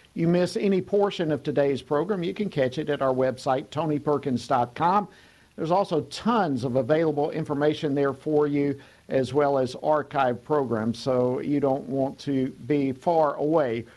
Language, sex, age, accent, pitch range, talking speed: English, male, 50-69, American, 130-175 Hz, 160 wpm